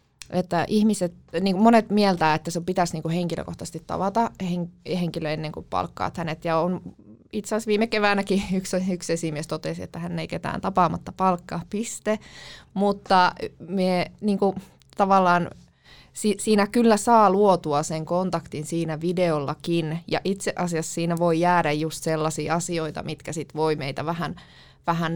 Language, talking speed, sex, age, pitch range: Finnish, 145 wpm, female, 20-39, 165-190 Hz